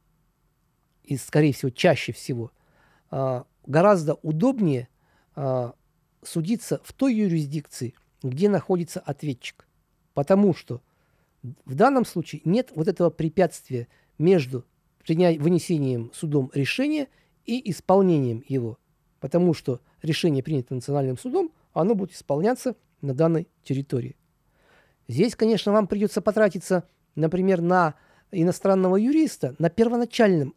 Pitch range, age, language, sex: 140-185 Hz, 50-69, Russian, male